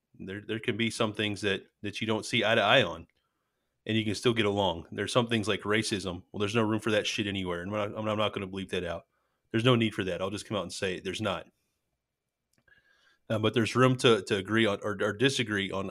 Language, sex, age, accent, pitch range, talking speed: English, male, 30-49, American, 100-115 Hz, 265 wpm